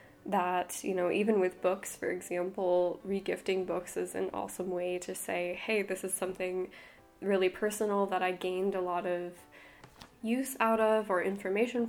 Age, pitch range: 10-29, 180-200 Hz